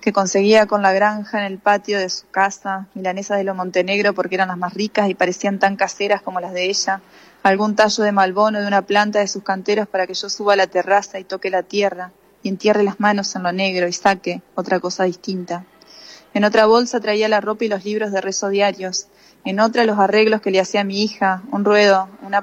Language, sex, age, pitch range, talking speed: Spanish, female, 20-39, 190-210 Hz, 230 wpm